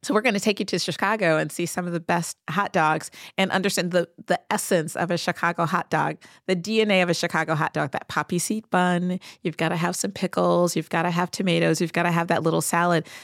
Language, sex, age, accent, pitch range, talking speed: English, female, 30-49, American, 165-195 Hz, 250 wpm